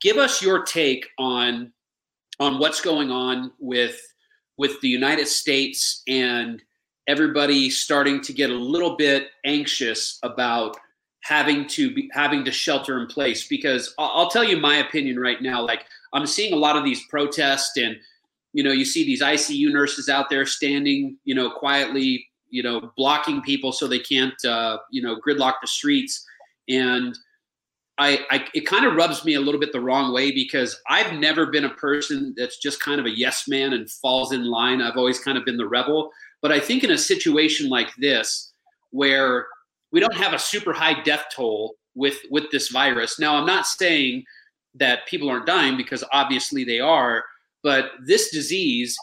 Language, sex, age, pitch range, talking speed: English, male, 30-49, 130-155 Hz, 180 wpm